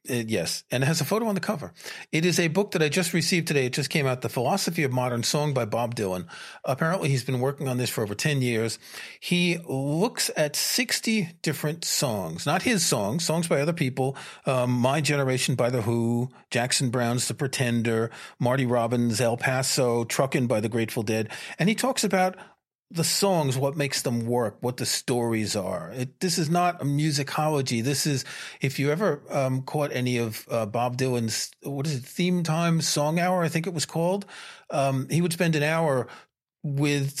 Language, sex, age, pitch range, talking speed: English, male, 40-59, 125-170 Hz, 200 wpm